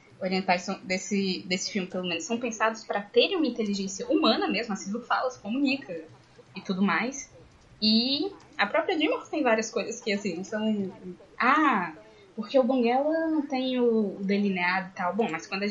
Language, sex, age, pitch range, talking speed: Portuguese, female, 10-29, 195-260 Hz, 180 wpm